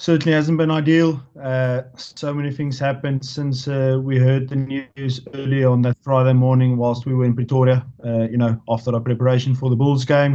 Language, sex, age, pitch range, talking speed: English, male, 20-39, 130-145 Hz, 205 wpm